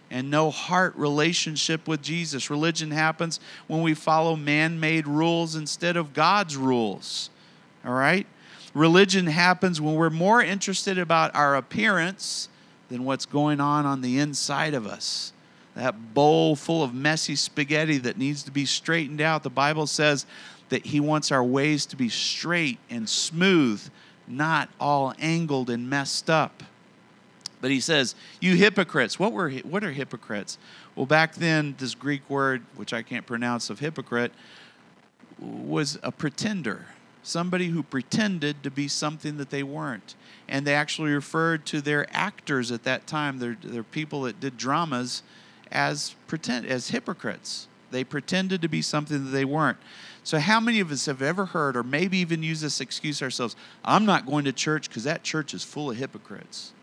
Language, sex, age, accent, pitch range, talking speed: English, male, 40-59, American, 135-170 Hz, 165 wpm